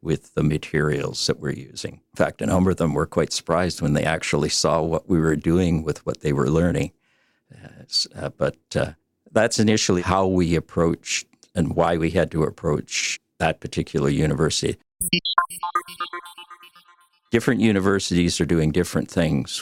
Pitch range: 80-90 Hz